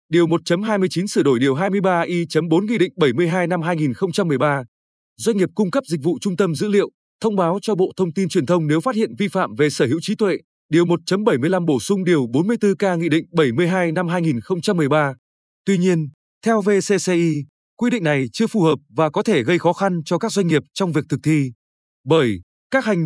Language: Vietnamese